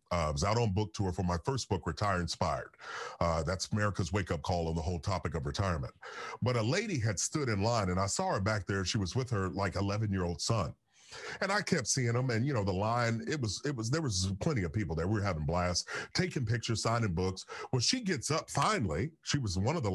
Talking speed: 240 wpm